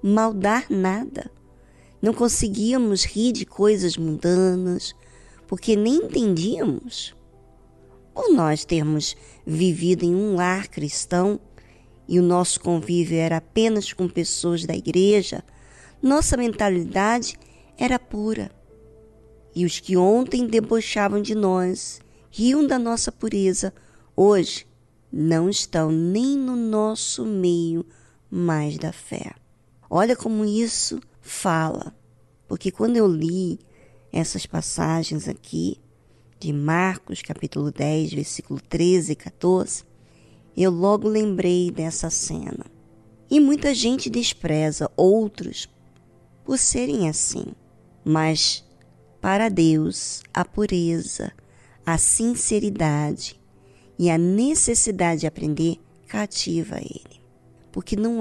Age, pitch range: 20-39, 160-215 Hz